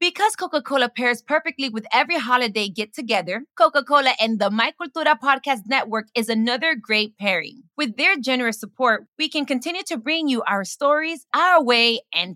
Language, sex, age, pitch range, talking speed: English, female, 20-39, 225-305 Hz, 165 wpm